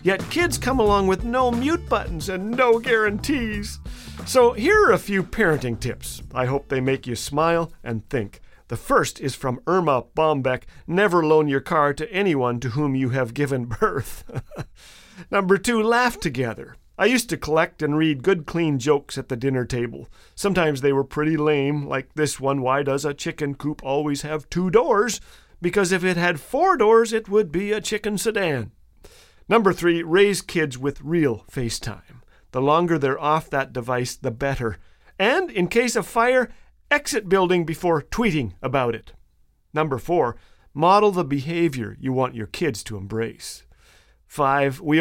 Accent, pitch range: American, 130-195 Hz